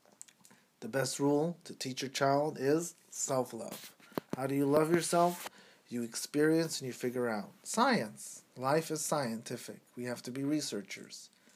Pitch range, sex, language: 125-175 Hz, male, English